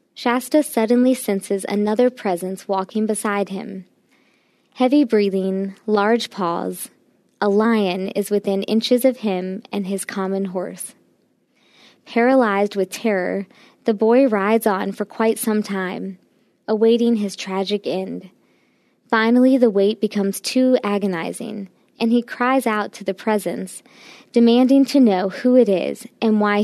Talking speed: 135 wpm